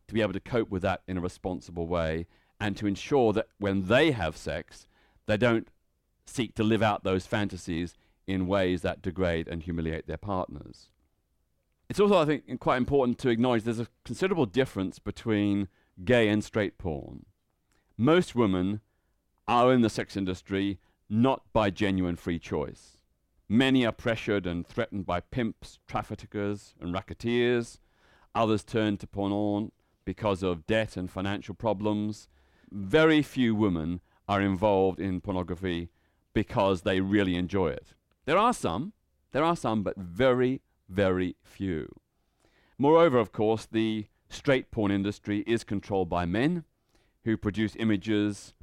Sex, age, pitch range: male, 40-59, 90-115 Hz